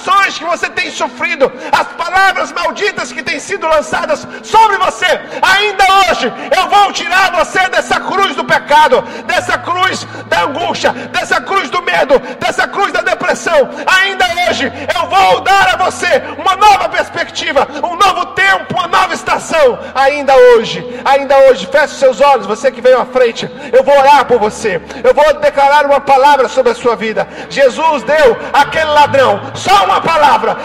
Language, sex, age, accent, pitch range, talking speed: Gujarati, male, 40-59, Brazilian, 280-375 Hz, 170 wpm